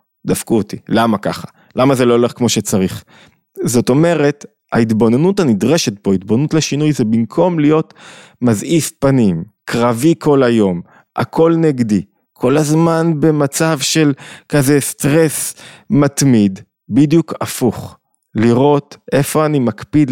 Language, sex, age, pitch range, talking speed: Hebrew, male, 20-39, 115-150 Hz, 120 wpm